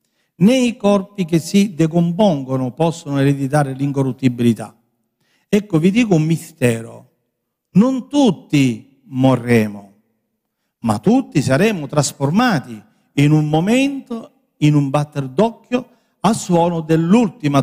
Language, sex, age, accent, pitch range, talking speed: Italian, male, 50-69, native, 140-200 Hz, 100 wpm